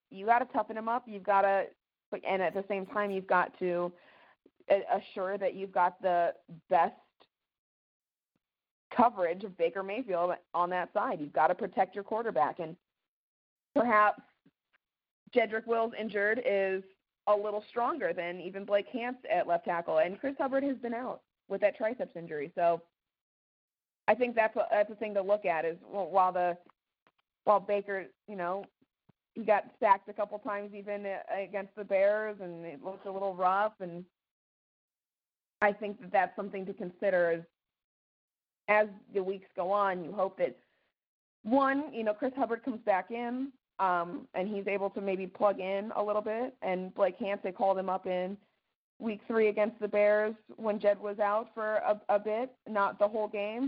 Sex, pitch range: female, 190-220 Hz